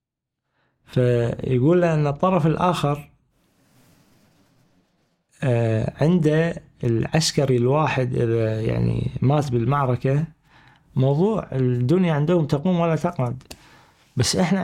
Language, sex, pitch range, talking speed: Arabic, male, 125-160 Hz, 80 wpm